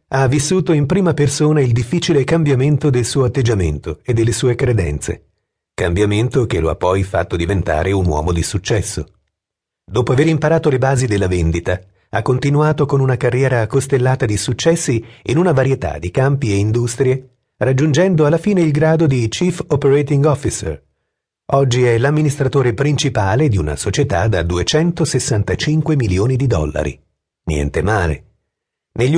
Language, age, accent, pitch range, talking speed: Italian, 40-59, native, 95-145 Hz, 150 wpm